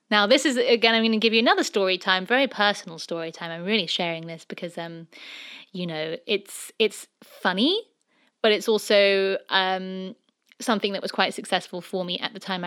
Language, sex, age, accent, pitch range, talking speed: English, female, 20-39, British, 190-245 Hz, 195 wpm